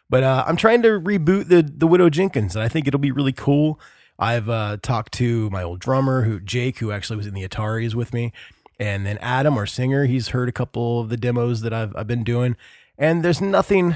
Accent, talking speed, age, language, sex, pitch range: American, 230 wpm, 20-39, English, male, 110-140 Hz